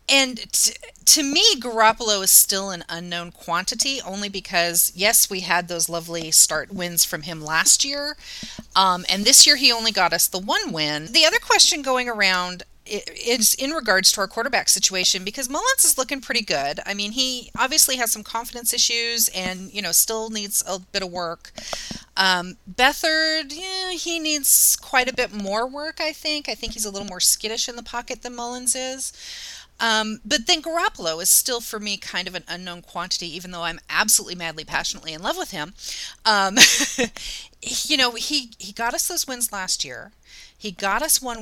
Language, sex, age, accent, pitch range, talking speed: English, female, 30-49, American, 180-255 Hz, 190 wpm